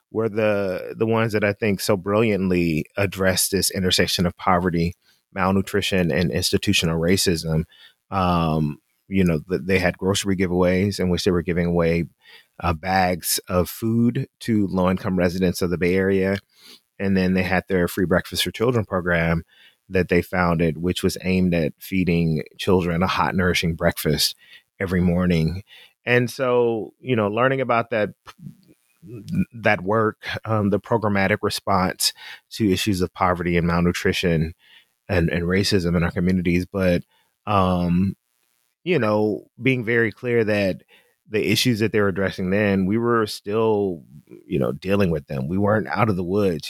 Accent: American